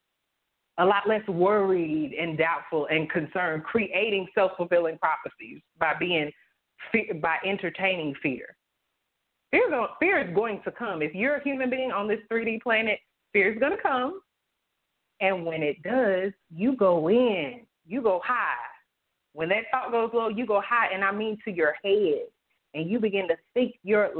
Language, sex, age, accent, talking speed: English, female, 30-49, American, 170 wpm